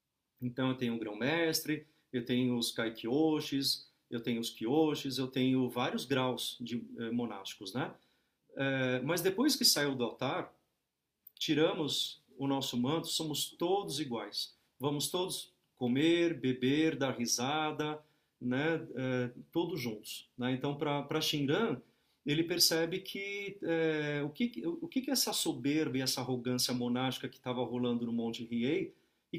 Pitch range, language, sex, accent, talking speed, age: 125-170 Hz, Portuguese, male, Brazilian, 145 wpm, 40-59